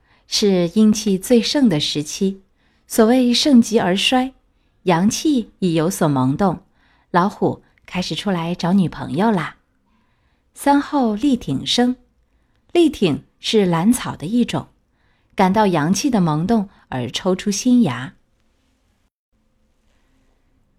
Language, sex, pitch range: Chinese, female, 180-235 Hz